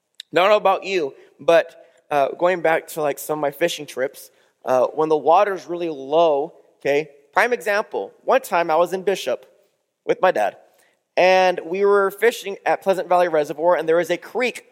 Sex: male